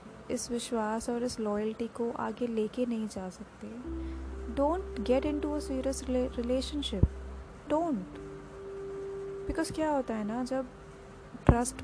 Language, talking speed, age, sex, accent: Hindi, 130 wpm, 20-39, female, native